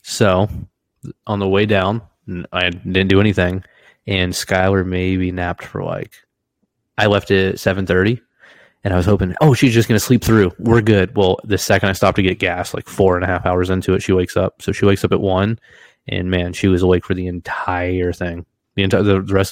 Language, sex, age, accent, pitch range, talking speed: English, male, 20-39, American, 90-100 Hz, 215 wpm